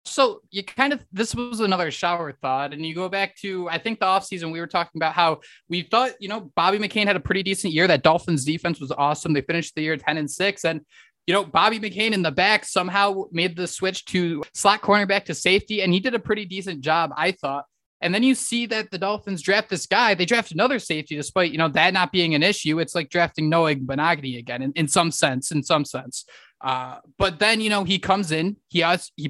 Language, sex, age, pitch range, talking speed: English, male, 20-39, 155-195 Hz, 245 wpm